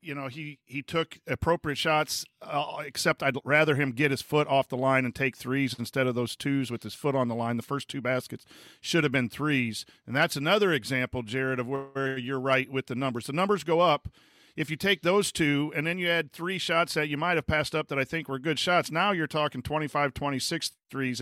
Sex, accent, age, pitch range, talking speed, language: male, American, 40-59, 135-165 Hz, 240 wpm, English